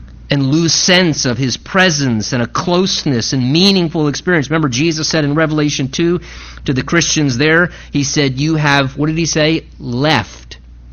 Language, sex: English, male